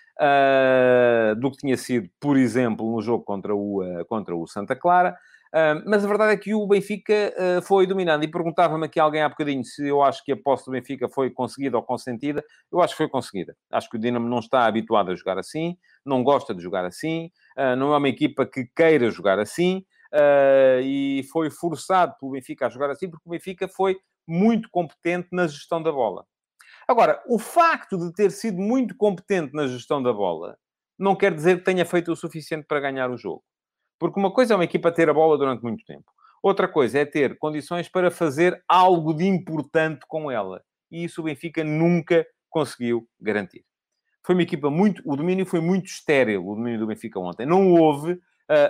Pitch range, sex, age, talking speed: 130-180 Hz, male, 40-59, 195 wpm